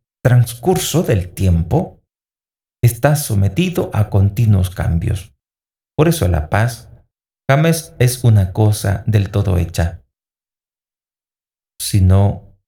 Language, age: Spanish, 50-69